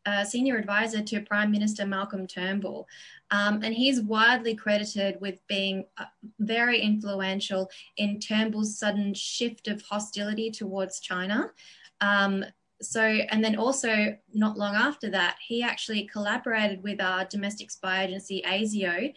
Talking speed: 140 wpm